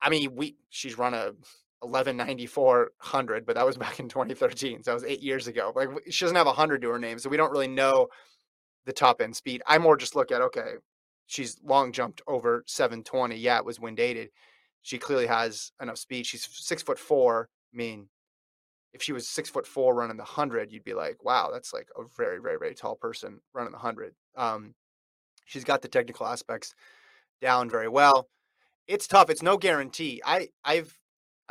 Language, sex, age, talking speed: English, male, 30-49, 205 wpm